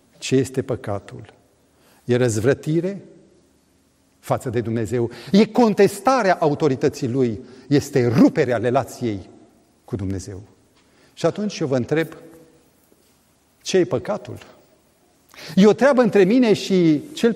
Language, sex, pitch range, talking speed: Romanian, male, 130-220 Hz, 110 wpm